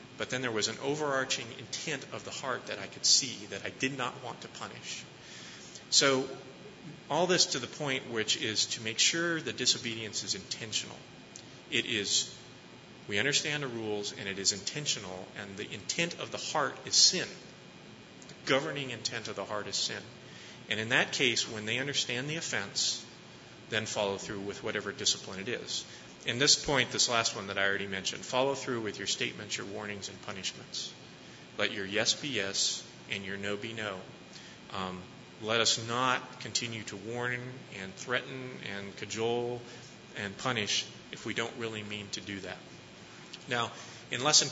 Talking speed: 180 wpm